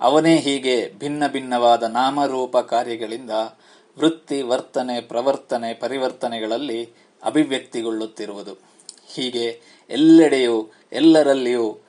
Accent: native